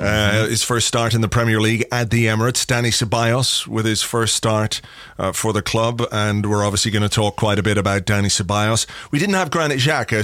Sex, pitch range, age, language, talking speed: male, 110-125 Hz, 30-49, English, 225 wpm